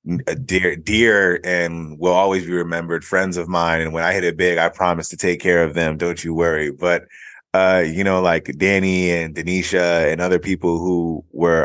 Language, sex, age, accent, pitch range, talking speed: English, male, 20-39, American, 85-95 Hz, 200 wpm